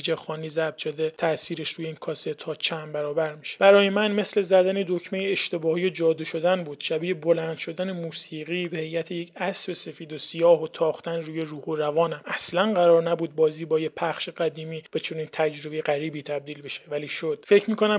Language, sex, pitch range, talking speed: Persian, male, 160-180 Hz, 185 wpm